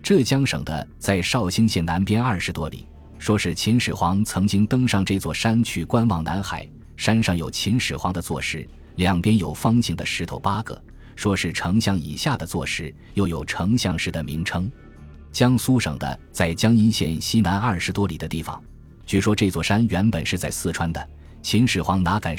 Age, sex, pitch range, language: 20-39, male, 85-110 Hz, Chinese